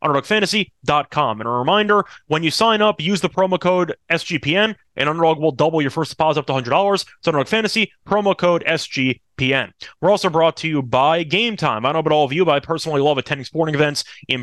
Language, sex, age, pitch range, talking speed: English, male, 30-49, 150-190 Hz, 215 wpm